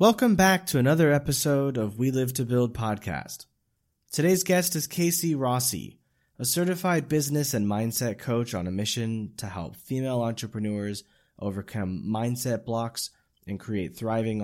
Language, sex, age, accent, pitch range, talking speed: English, male, 20-39, American, 100-125 Hz, 145 wpm